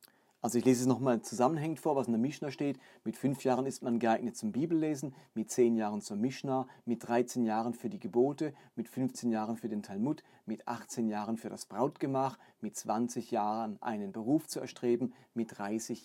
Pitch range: 120-160 Hz